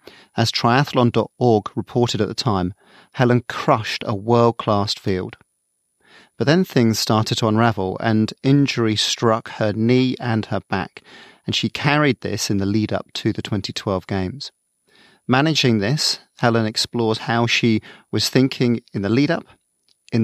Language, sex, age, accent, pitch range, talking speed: English, male, 40-59, British, 105-130 Hz, 140 wpm